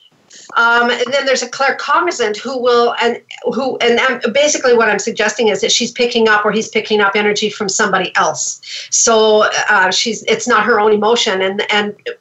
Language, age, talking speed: English, 50-69, 190 wpm